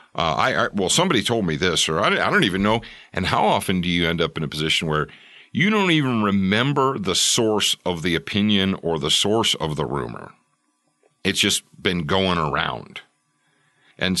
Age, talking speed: 50-69, 195 wpm